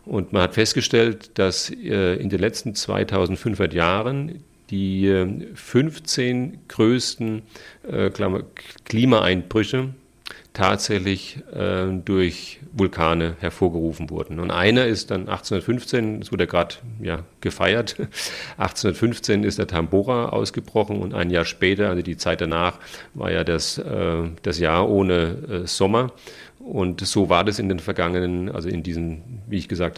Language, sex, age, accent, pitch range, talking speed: German, male, 40-59, German, 85-105 Hz, 125 wpm